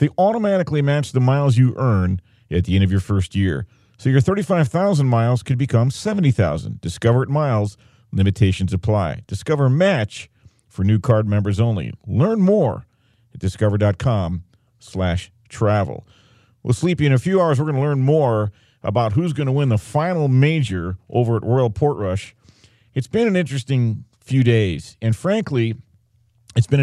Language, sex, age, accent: English, male, 40-59, American